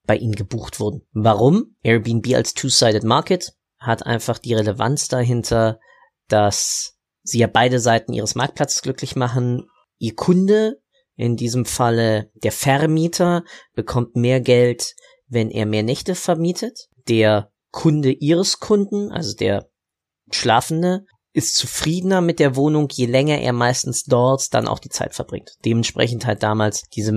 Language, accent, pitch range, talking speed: German, German, 115-145 Hz, 140 wpm